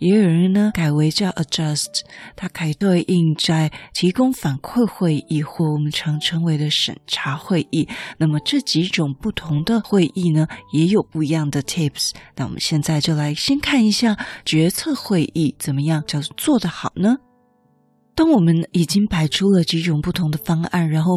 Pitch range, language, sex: 155-195 Hz, Chinese, female